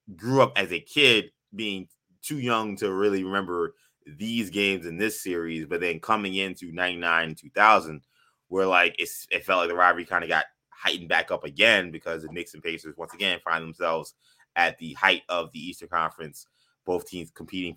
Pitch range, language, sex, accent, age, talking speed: 85-105 Hz, English, male, American, 20-39, 185 wpm